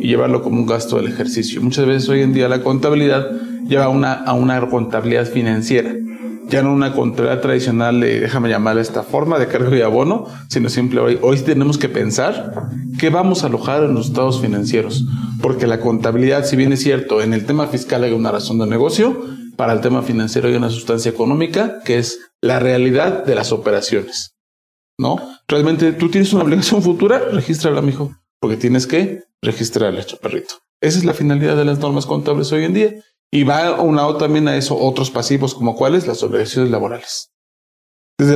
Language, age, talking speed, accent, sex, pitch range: Spanish, 40-59, 195 wpm, Mexican, male, 125-155 Hz